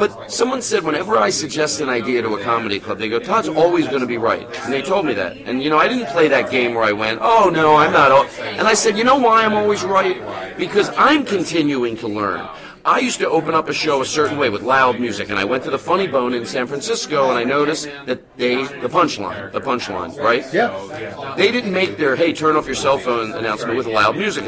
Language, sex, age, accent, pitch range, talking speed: English, male, 40-59, American, 115-190 Hz, 250 wpm